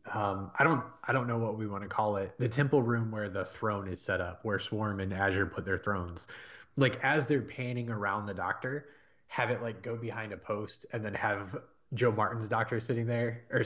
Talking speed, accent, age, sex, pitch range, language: 225 wpm, American, 20-39, male, 105-130 Hz, English